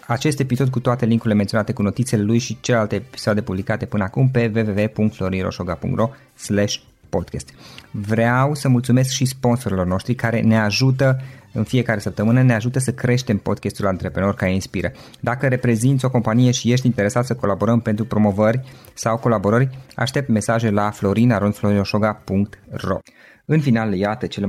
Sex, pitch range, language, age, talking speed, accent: male, 100-120 Hz, Romanian, 20-39, 145 wpm, native